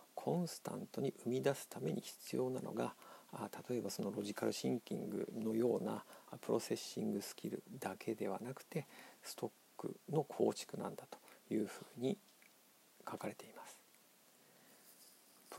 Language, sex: Japanese, male